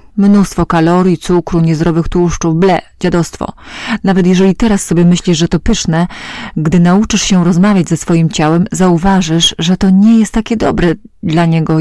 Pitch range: 165-190 Hz